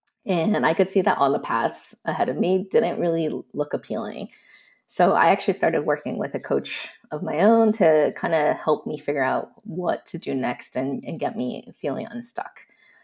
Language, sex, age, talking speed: English, female, 20-39, 200 wpm